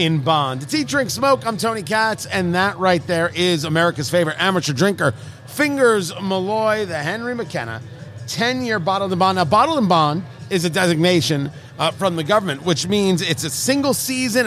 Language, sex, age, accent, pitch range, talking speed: English, male, 40-59, American, 150-210 Hz, 175 wpm